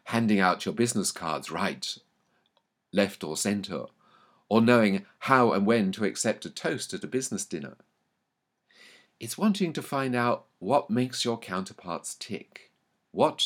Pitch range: 100-140 Hz